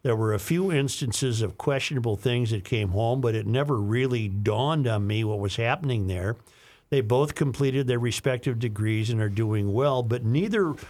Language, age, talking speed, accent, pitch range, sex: English, 50-69, 185 wpm, American, 115-145 Hz, male